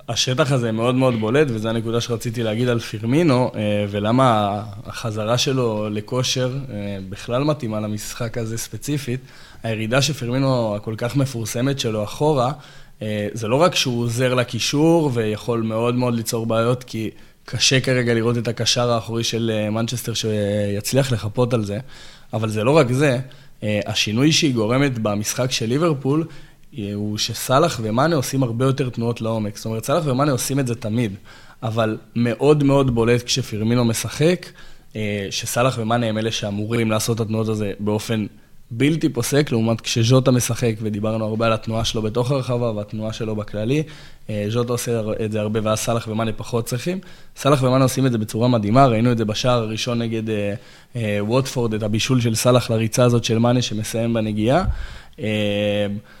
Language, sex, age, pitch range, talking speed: Hebrew, male, 20-39, 110-130 Hz, 145 wpm